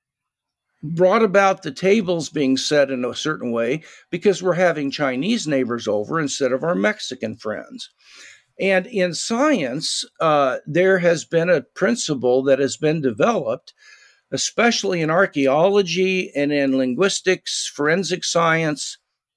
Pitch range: 140-190 Hz